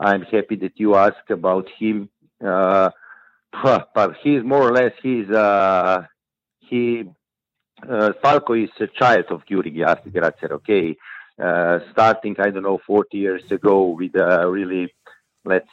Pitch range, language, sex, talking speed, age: 95-110 Hz, English, male, 140 wpm, 50-69